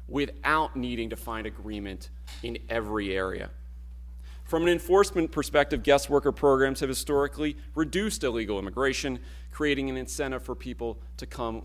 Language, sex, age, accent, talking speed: English, male, 40-59, American, 140 wpm